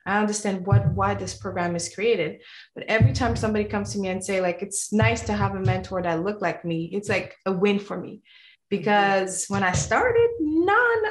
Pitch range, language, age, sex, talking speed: 190-235 Hz, English, 20-39, female, 210 wpm